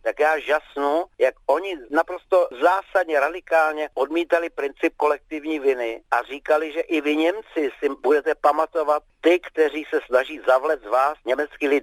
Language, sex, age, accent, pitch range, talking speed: Czech, male, 50-69, native, 145-225 Hz, 150 wpm